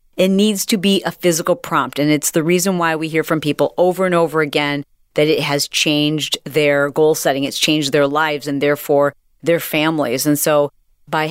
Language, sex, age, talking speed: English, female, 40-59, 200 wpm